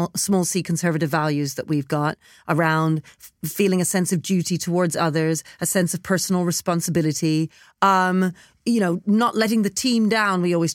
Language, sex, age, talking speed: English, female, 30-49, 165 wpm